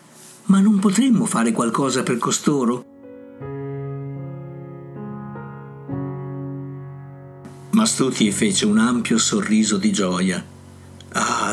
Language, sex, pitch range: Italian, male, 115-195 Hz